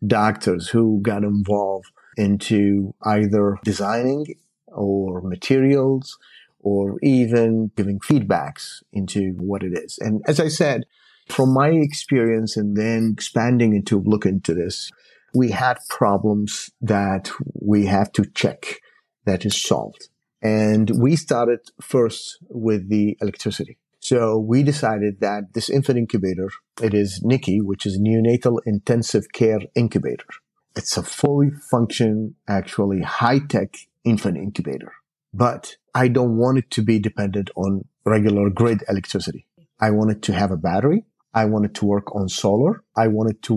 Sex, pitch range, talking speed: male, 100-120 Hz, 145 wpm